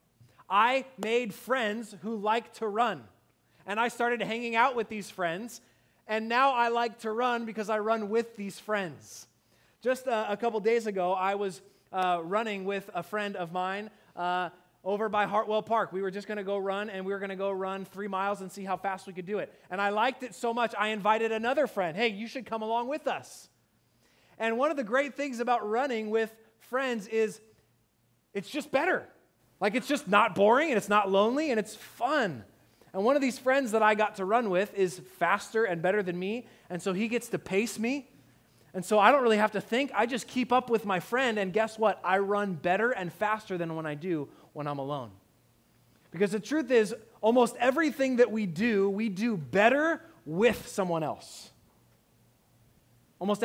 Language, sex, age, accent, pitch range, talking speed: English, male, 30-49, American, 185-235 Hz, 205 wpm